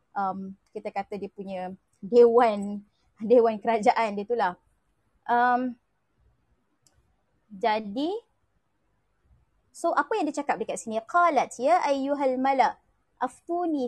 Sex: female